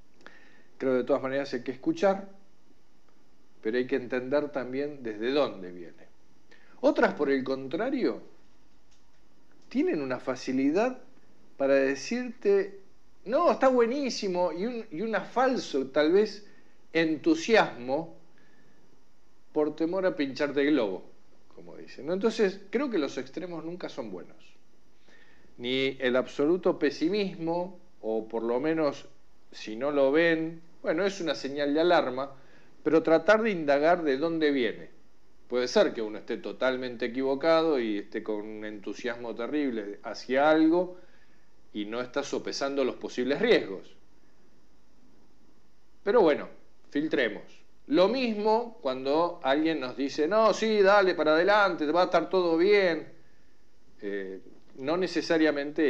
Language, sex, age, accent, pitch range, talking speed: Spanish, male, 50-69, Argentinian, 130-185 Hz, 130 wpm